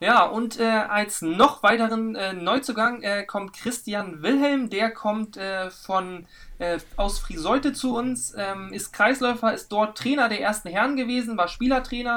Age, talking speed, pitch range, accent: 20-39, 165 wpm, 195-235 Hz, German